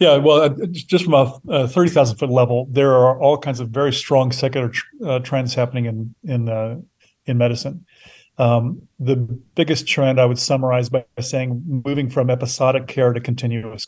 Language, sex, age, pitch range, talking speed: English, male, 40-59, 120-135 Hz, 175 wpm